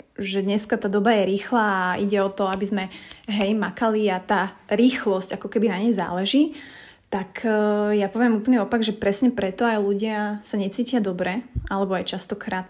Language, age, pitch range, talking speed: Slovak, 30-49, 195-230 Hz, 180 wpm